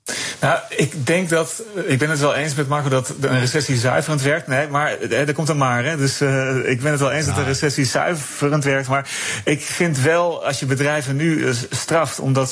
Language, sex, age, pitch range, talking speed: Dutch, male, 30-49, 120-140 Hz, 210 wpm